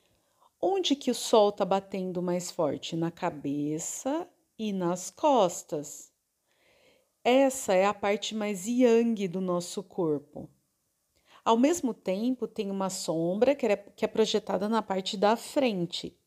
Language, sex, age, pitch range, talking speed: Portuguese, female, 40-59, 185-245 Hz, 130 wpm